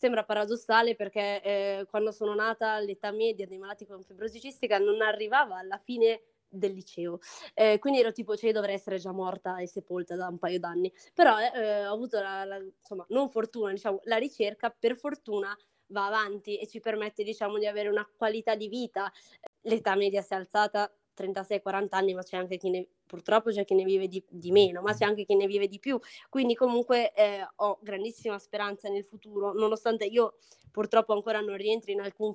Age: 20-39